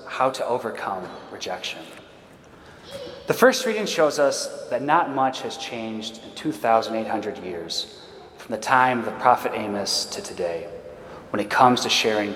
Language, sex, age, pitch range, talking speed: English, male, 30-49, 115-160 Hz, 150 wpm